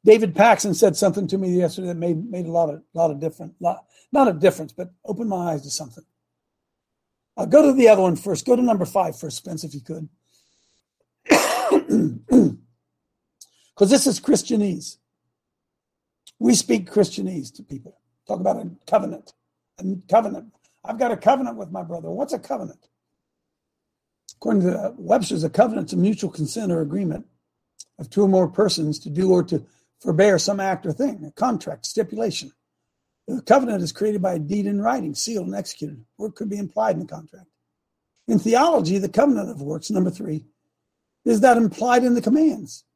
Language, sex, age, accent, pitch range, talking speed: English, male, 60-79, American, 165-230 Hz, 180 wpm